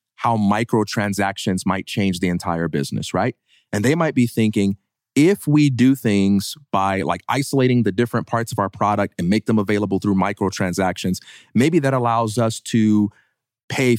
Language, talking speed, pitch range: English, 165 wpm, 100-120 Hz